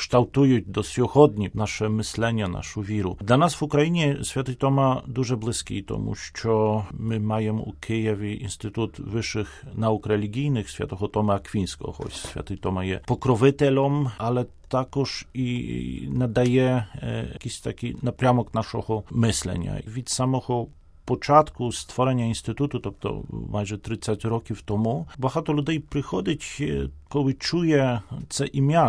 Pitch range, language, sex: 105-130 Hz, Ukrainian, male